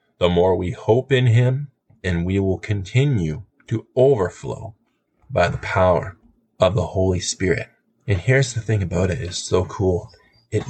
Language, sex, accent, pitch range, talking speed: English, male, American, 90-115 Hz, 165 wpm